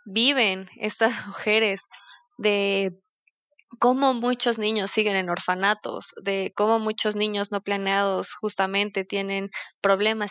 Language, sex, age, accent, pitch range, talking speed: Spanish, female, 20-39, Mexican, 195-225 Hz, 110 wpm